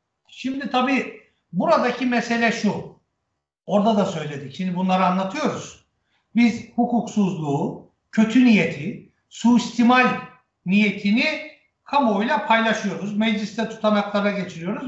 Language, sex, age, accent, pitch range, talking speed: Turkish, male, 60-79, native, 200-260 Hz, 90 wpm